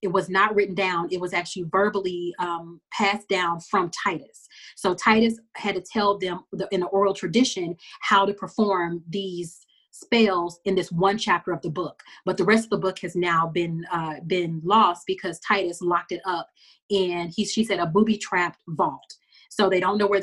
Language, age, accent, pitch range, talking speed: English, 30-49, American, 175-210 Hz, 195 wpm